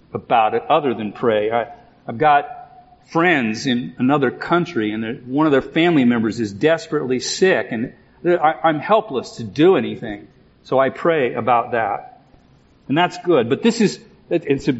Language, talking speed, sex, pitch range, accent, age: English, 160 wpm, male, 130-180 Hz, American, 40-59